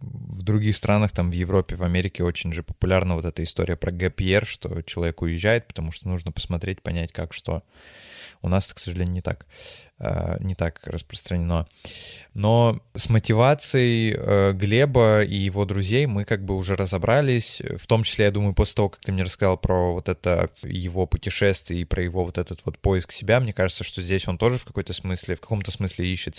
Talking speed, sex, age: 190 wpm, male, 20-39